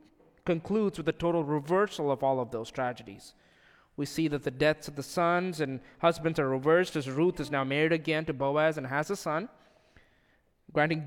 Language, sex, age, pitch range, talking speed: English, male, 20-39, 130-160 Hz, 190 wpm